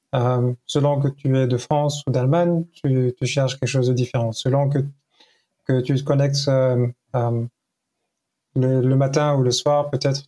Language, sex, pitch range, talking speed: French, male, 130-145 Hz, 180 wpm